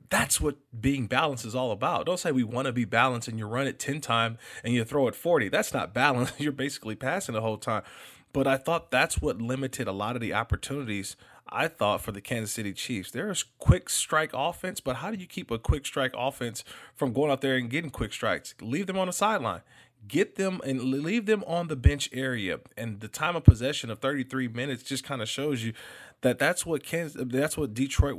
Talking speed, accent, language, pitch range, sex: 225 wpm, American, English, 115-145 Hz, male